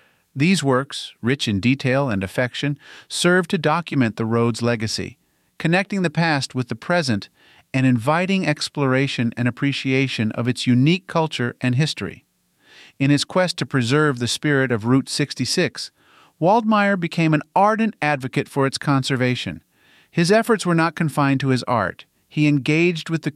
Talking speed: 155 wpm